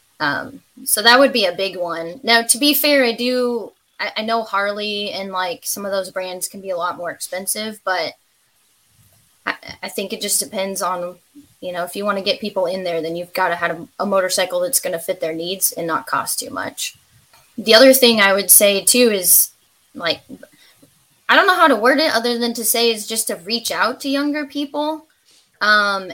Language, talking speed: English, 220 wpm